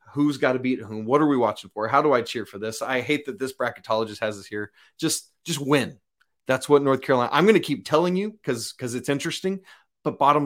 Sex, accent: male, American